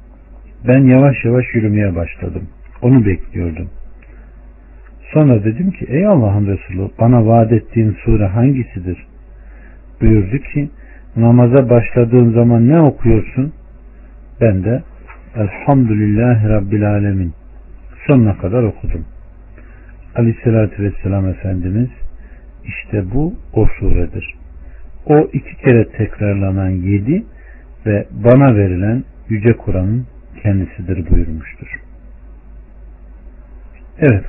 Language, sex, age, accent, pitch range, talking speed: Turkish, male, 60-79, native, 80-120 Hz, 95 wpm